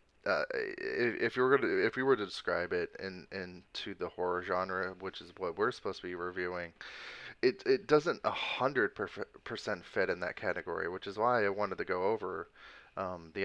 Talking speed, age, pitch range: 200 wpm, 20-39, 90-125 Hz